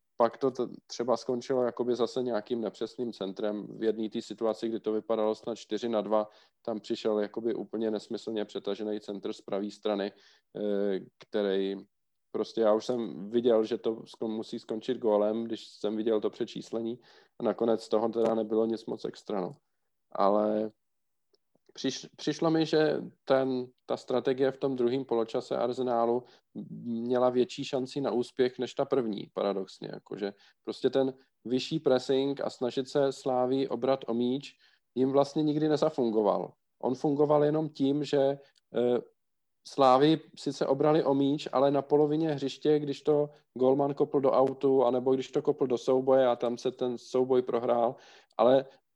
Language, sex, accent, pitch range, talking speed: Czech, male, native, 110-135 Hz, 155 wpm